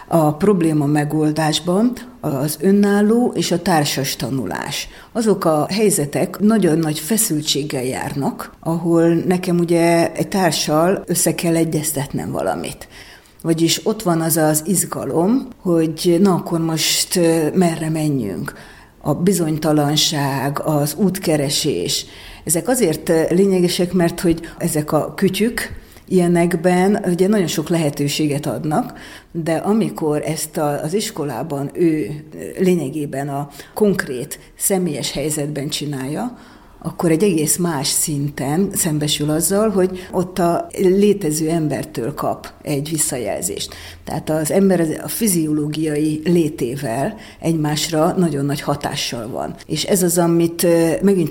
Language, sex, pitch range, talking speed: Hungarian, female, 150-180 Hz, 115 wpm